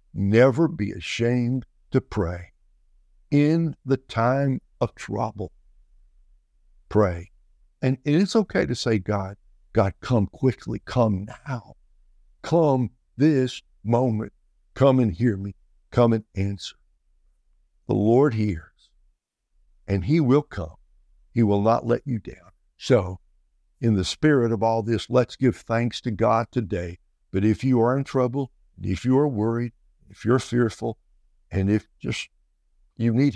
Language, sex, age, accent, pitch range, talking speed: English, male, 60-79, American, 90-125 Hz, 140 wpm